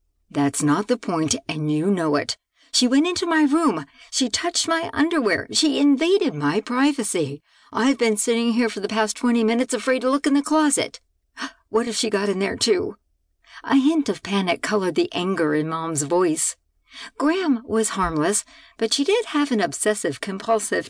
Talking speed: 180 wpm